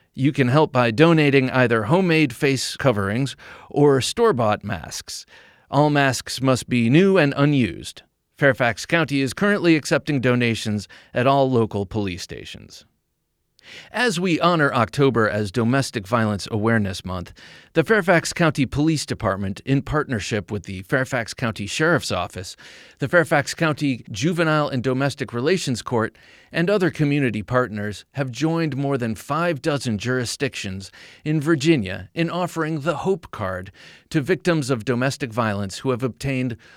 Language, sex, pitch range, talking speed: English, male, 110-150 Hz, 140 wpm